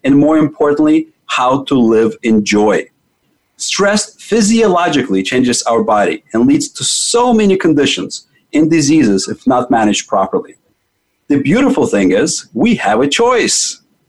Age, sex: 40-59, male